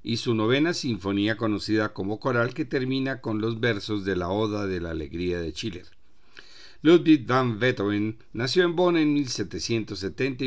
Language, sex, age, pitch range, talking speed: Spanish, male, 50-69, 100-130 Hz, 160 wpm